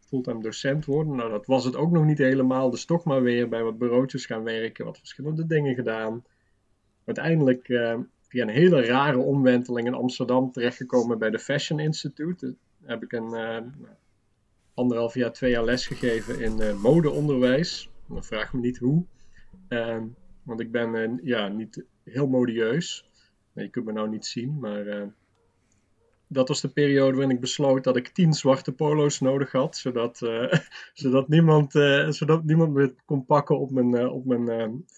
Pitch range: 115-135 Hz